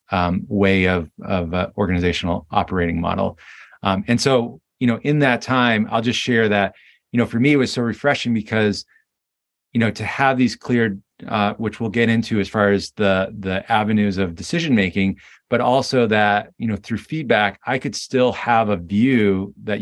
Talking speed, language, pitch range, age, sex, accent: 190 wpm, English, 100-120 Hz, 30-49, male, American